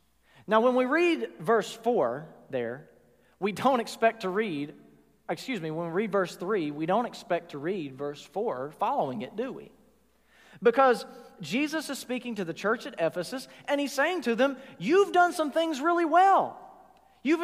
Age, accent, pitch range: 40-59, American, 165-240 Hz